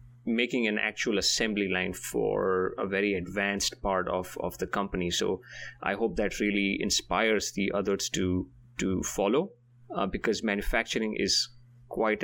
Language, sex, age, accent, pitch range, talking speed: English, male, 30-49, Indian, 100-120 Hz, 145 wpm